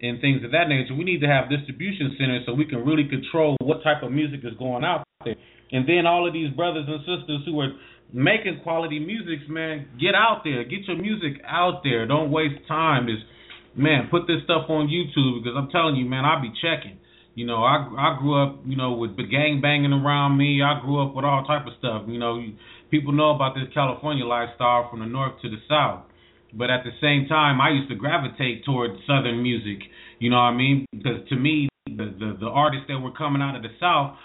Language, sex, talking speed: English, male, 230 wpm